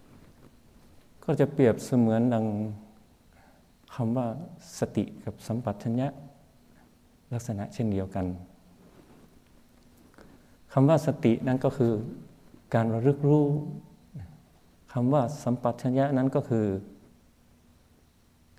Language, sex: Thai, male